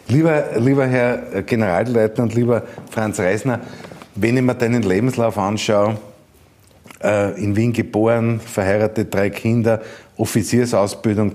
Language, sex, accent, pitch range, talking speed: German, male, Austrian, 100-115 Hz, 105 wpm